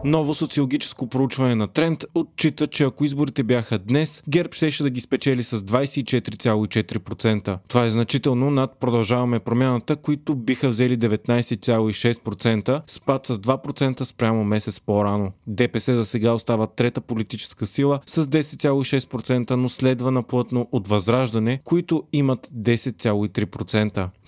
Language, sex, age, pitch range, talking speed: Bulgarian, male, 30-49, 115-140 Hz, 125 wpm